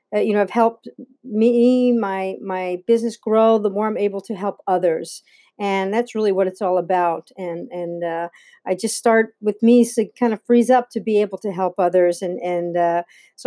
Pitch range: 195-245 Hz